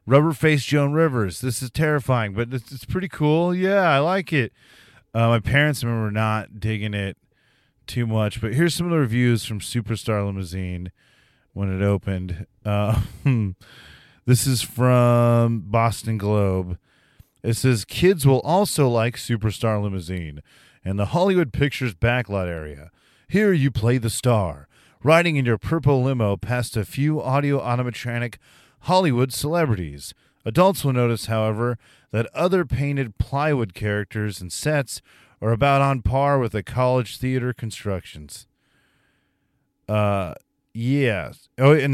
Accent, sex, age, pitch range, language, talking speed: American, male, 30-49, 105-135 Hz, English, 140 wpm